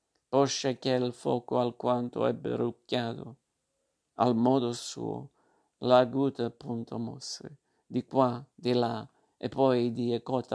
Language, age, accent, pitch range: Italian, 50-69, native, 120-130 Hz